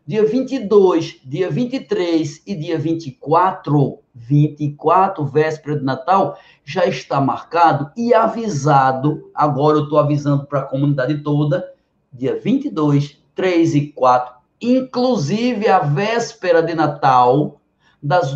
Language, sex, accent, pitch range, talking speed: Portuguese, male, Brazilian, 150-195 Hz, 115 wpm